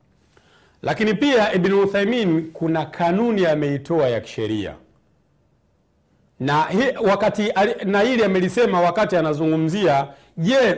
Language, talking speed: Swahili, 105 wpm